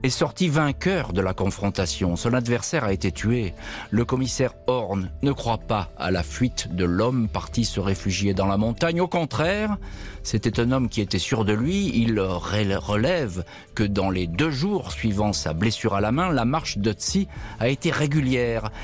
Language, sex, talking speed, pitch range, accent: French, male, 180 wpm, 95-130 Hz, French